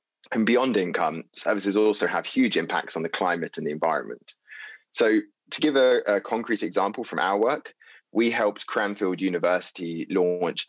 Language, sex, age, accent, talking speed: English, male, 20-39, British, 165 wpm